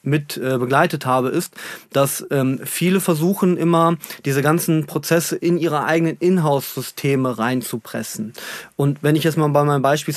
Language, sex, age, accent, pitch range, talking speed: German, male, 30-49, German, 140-170 Hz, 150 wpm